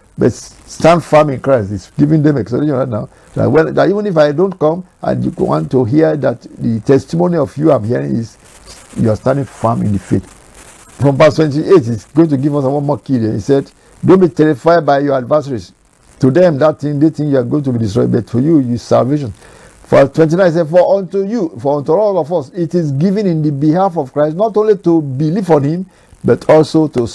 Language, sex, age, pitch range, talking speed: English, male, 60-79, 120-160 Hz, 230 wpm